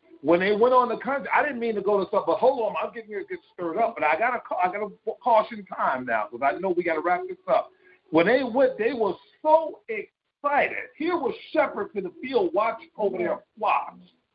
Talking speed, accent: 245 wpm, American